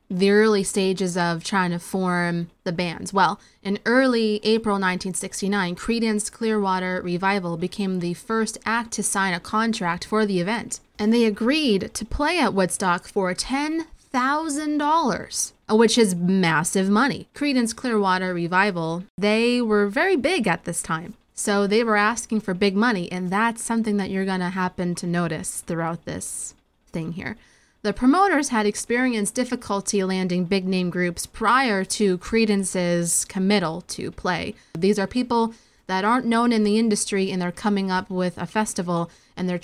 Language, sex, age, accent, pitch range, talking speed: English, female, 20-39, American, 180-225 Hz, 160 wpm